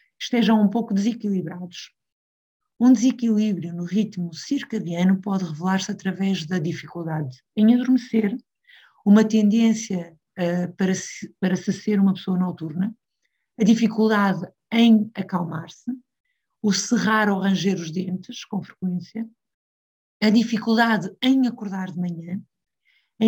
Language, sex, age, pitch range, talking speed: Portuguese, female, 50-69, 185-225 Hz, 115 wpm